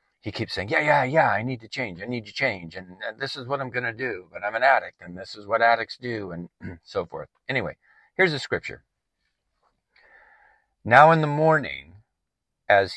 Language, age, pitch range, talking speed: English, 50-69, 90-135 Hz, 200 wpm